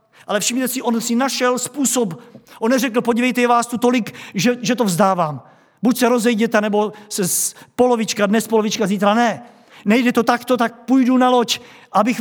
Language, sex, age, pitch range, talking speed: Czech, male, 50-69, 175-245 Hz, 175 wpm